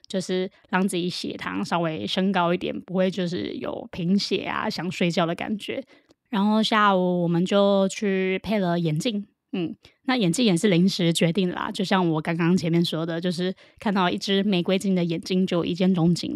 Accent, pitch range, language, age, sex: American, 180-220 Hz, Chinese, 20-39, female